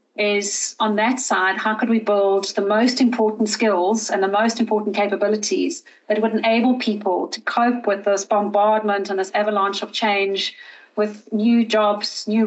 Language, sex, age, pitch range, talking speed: English, female, 40-59, 200-230 Hz, 170 wpm